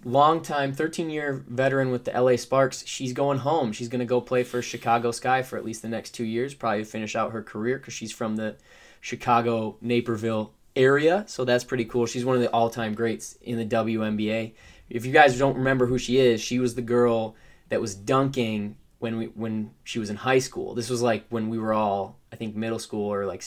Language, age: English, 20-39